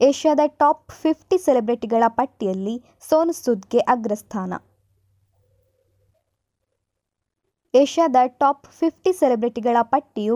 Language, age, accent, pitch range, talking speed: Kannada, 20-39, native, 220-285 Hz, 75 wpm